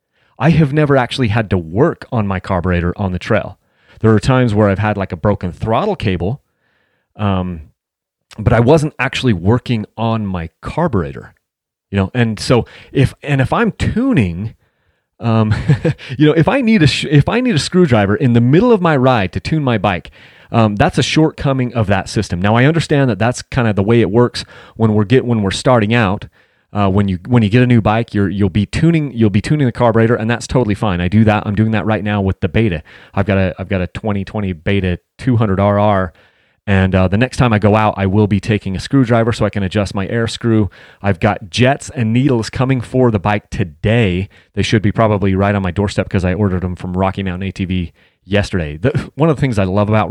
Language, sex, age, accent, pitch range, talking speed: English, male, 30-49, American, 100-120 Hz, 225 wpm